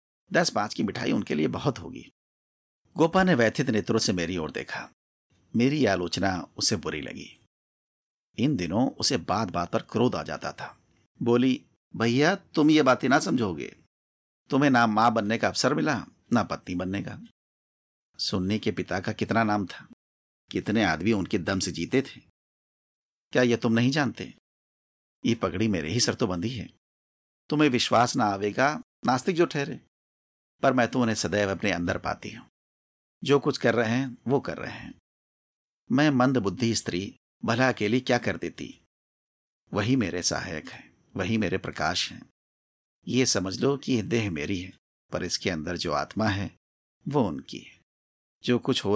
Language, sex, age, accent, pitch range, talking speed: Hindi, male, 50-69, native, 80-125 Hz, 170 wpm